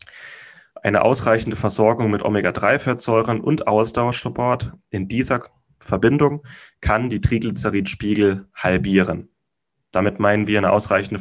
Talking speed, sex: 100 wpm, male